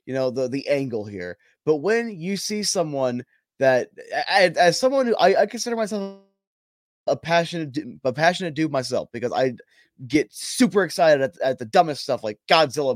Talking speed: 170 wpm